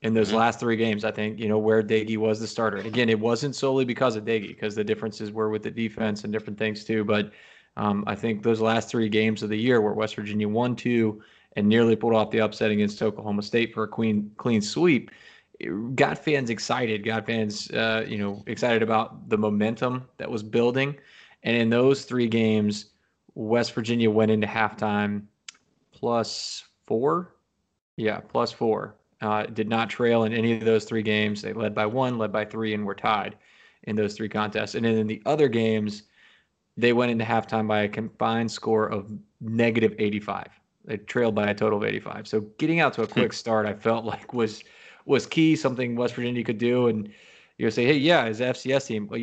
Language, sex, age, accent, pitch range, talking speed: English, male, 20-39, American, 105-120 Hz, 200 wpm